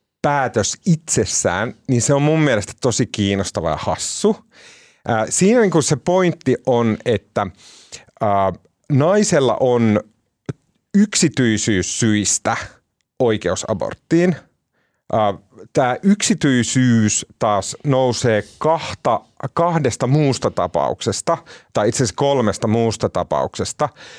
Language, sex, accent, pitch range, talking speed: Finnish, male, native, 100-135 Hz, 100 wpm